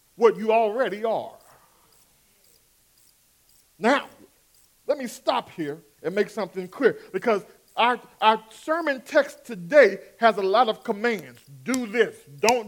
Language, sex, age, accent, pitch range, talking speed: English, male, 40-59, American, 225-320 Hz, 130 wpm